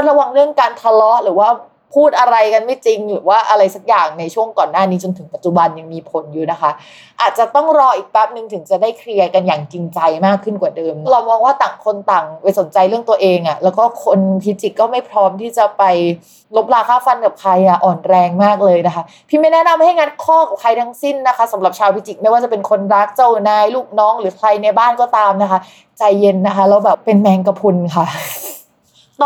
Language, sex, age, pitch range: Thai, female, 20-39, 190-245 Hz